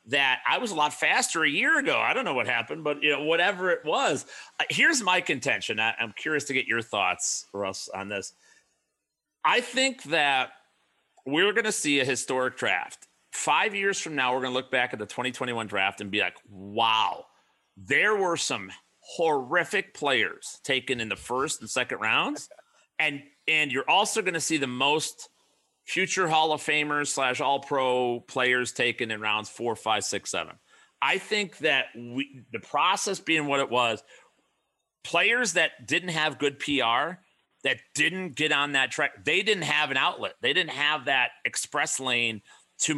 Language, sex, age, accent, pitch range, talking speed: English, male, 40-59, American, 115-155 Hz, 180 wpm